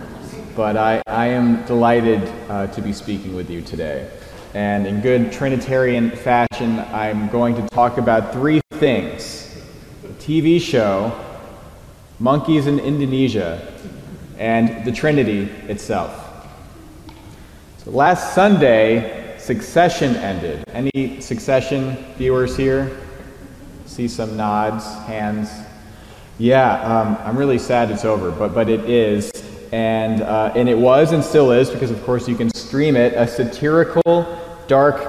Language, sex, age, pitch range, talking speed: English, male, 30-49, 110-145 Hz, 130 wpm